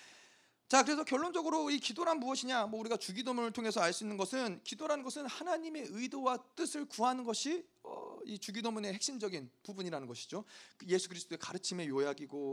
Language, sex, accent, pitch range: Korean, male, native, 165-245 Hz